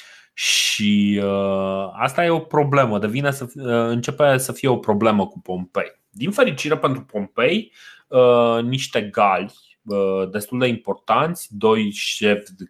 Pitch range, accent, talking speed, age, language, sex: 105-145 Hz, native, 130 wpm, 30-49, Romanian, male